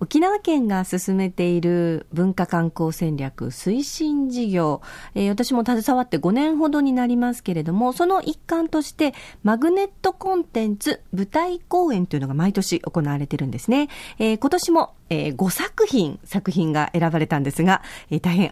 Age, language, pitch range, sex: 40-59, Japanese, 165-275 Hz, female